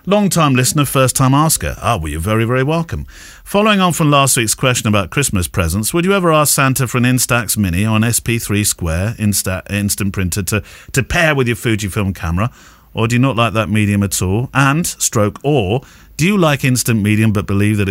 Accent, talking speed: British, 215 wpm